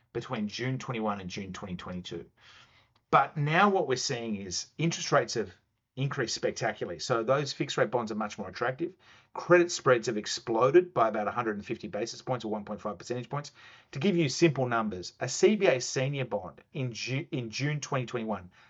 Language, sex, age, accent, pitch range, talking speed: English, male, 40-59, Australian, 115-150 Hz, 165 wpm